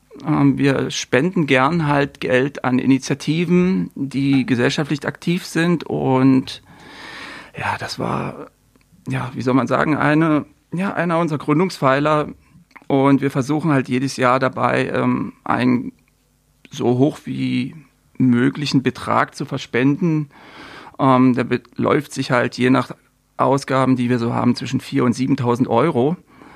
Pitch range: 125-145 Hz